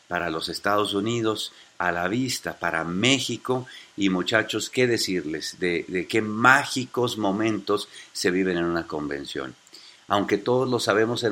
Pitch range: 95-120 Hz